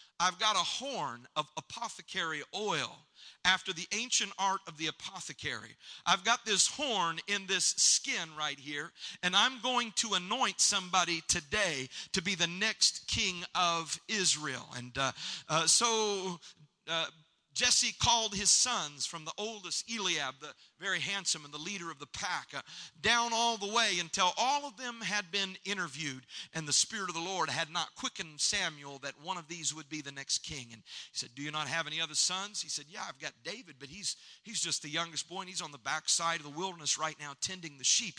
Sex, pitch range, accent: male, 150-200 Hz, American